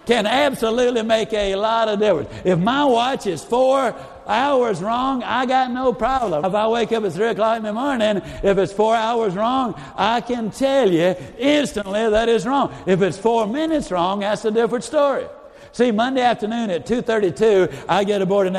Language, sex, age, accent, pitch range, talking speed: English, male, 60-79, American, 185-235 Hz, 190 wpm